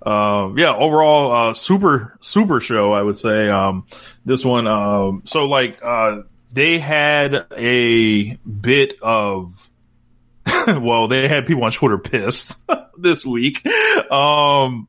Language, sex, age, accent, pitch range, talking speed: English, male, 20-39, American, 115-135 Hz, 130 wpm